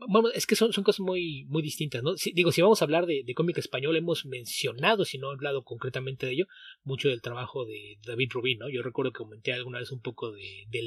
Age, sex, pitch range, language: 30-49, male, 125-170 Hz, Spanish